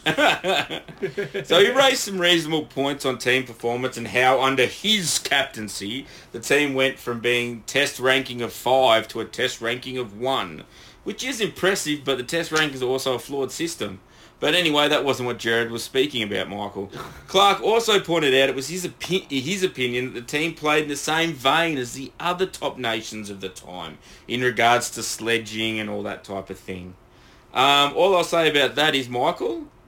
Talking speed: 190 wpm